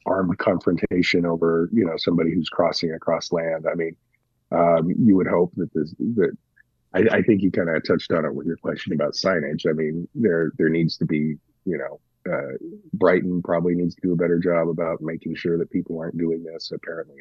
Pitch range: 80-90 Hz